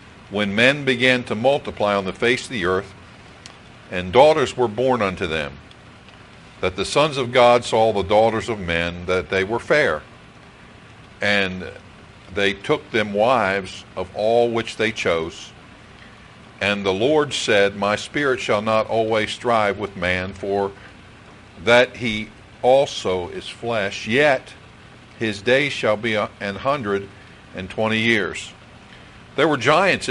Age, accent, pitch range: 60-79, American, 100-120 Hz